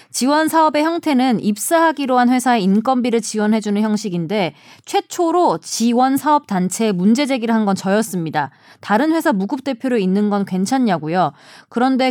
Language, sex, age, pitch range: Korean, female, 20-39, 195-275 Hz